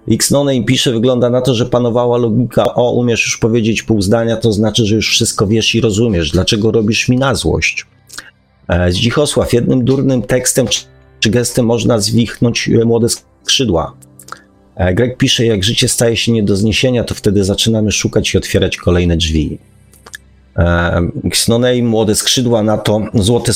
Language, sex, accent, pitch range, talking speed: Polish, male, native, 90-120 Hz, 155 wpm